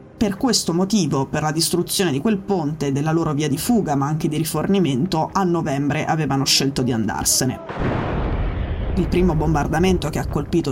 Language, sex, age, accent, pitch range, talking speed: Italian, female, 20-39, native, 145-180 Hz, 170 wpm